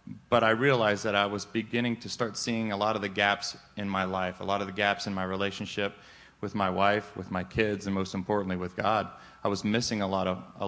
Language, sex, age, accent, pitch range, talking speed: English, male, 30-49, American, 100-120 Hz, 245 wpm